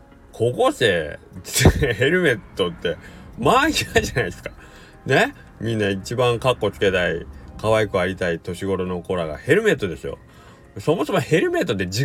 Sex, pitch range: male, 85-125 Hz